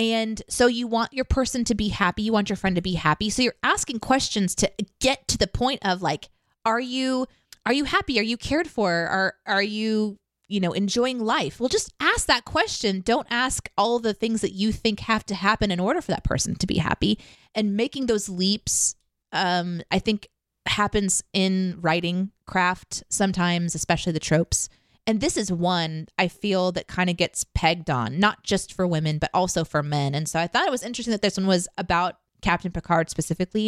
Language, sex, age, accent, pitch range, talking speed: English, female, 20-39, American, 170-225 Hz, 210 wpm